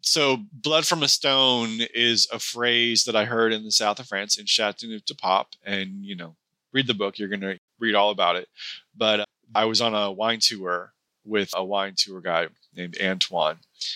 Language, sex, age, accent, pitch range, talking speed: English, male, 30-49, American, 95-120 Hz, 200 wpm